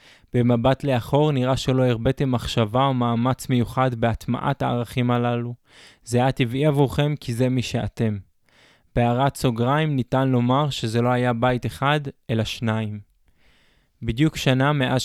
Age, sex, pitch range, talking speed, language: 20-39, male, 115-135 Hz, 135 wpm, Hebrew